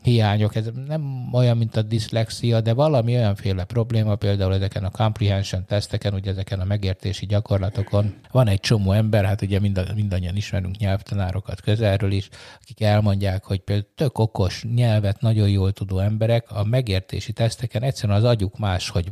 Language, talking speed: Hungarian, 165 wpm